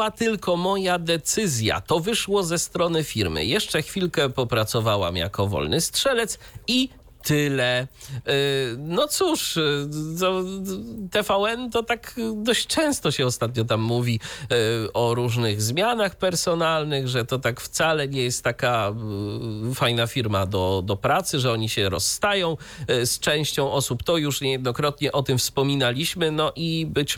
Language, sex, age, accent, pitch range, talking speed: Polish, male, 40-59, native, 110-170 Hz, 130 wpm